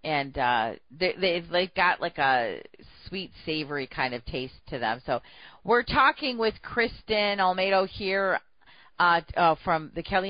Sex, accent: female, American